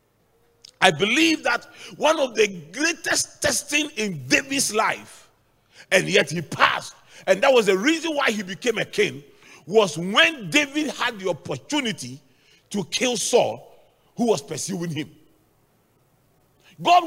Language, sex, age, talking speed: English, male, 40-59, 135 wpm